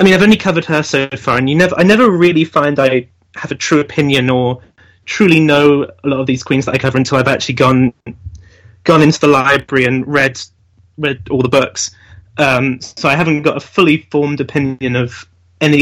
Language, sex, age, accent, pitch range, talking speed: English, male, 30-49, British, 120-170 Hz, 215 wpm